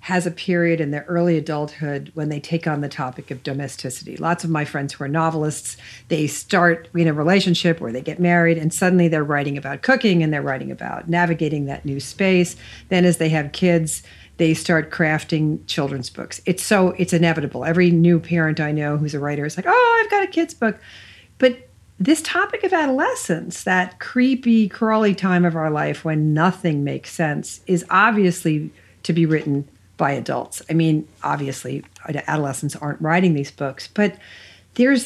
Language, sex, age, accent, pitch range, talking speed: English, female, 50-69, American, 145-185 Hz, 185 wpm